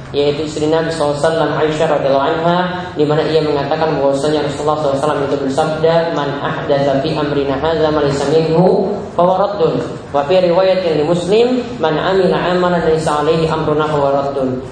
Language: English